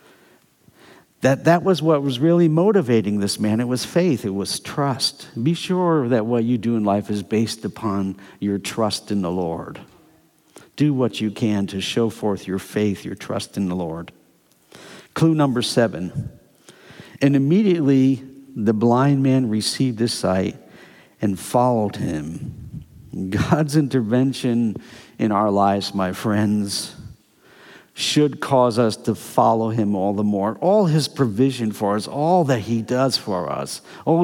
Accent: American